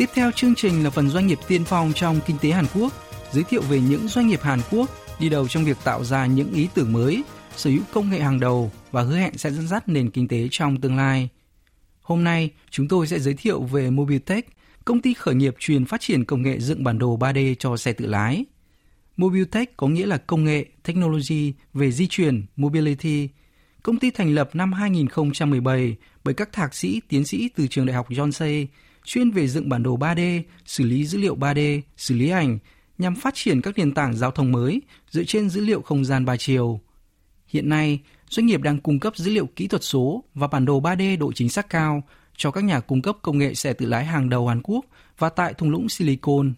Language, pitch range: Vietnamese, 135-180 Hz